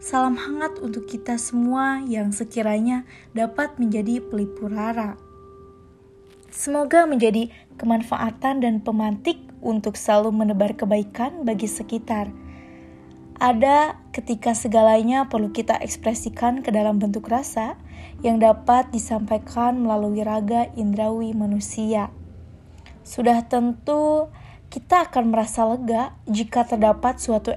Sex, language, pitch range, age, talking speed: female, Indonesian, 210-245 Hz, 20-39, 100 wpm